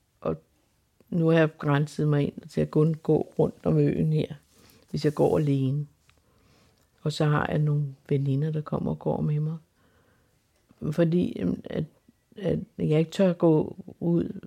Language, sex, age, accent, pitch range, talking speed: Danish, female, 60-79, native, 150-180 Hz, 155 wpm